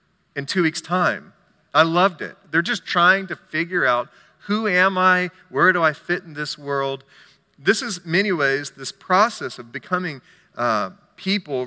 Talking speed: 175 wpm